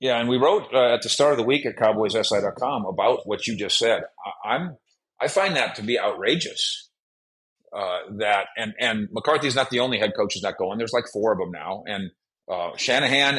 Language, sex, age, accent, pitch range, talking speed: English, male, 40-59, American, 115-150 Hz, 215 wpm